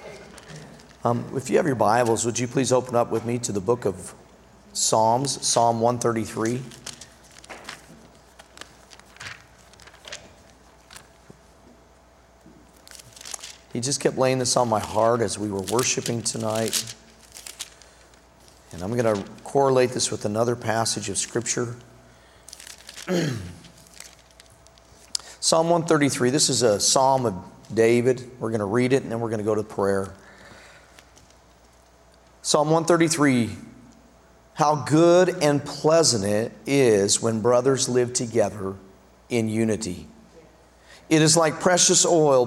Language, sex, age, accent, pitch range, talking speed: English, male, 40-59, American, 100-135 Hz, 120 wpm